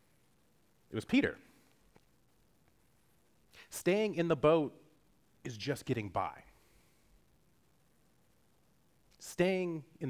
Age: 30-49